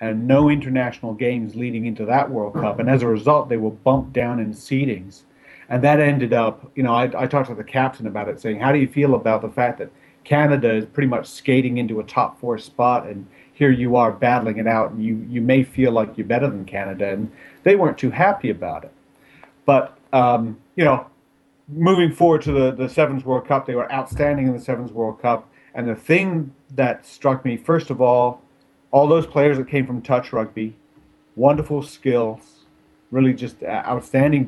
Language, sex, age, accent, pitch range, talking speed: English, male, 40-59, American, 115-140 Hz, 205 wpm